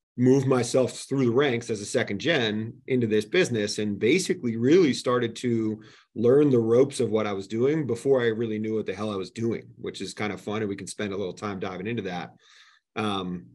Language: English